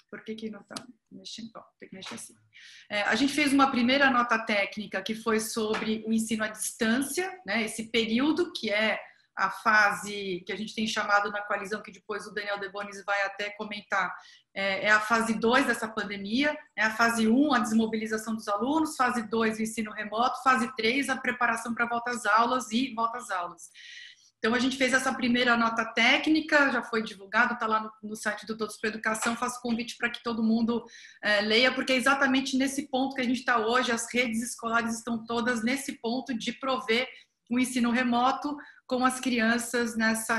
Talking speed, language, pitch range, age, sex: 190 wpm, Portuguese, 220-255 Hz, 30-49, female